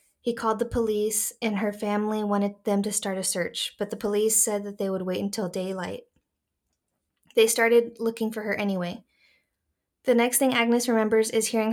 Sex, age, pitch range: female, 20-39, 205-230 Hz